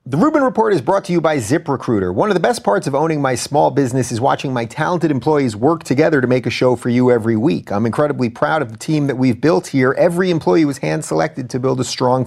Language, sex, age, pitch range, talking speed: English, male, 30-49, 125-160 Hz, 255 wpm